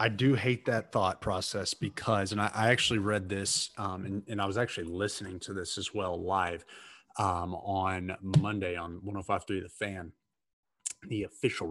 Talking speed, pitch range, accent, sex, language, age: 170 wpm, 95-115 Hz, American, male, English, 30-49